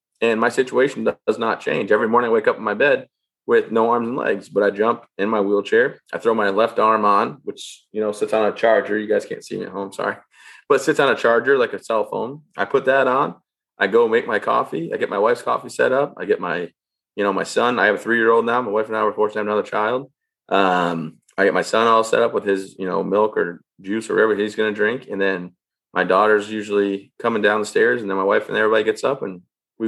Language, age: English, 20-39